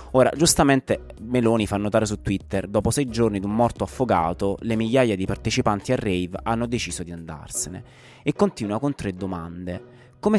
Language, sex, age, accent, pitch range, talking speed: Italian, male, 20-39, native, 95-125 Hz, 175 wpm